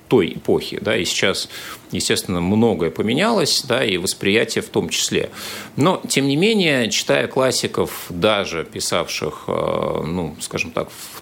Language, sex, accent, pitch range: Russian, male, native, 85-110 Hz